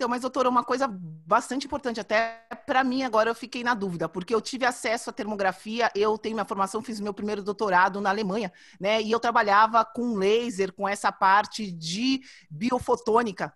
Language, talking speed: Portuguese, 185 wpm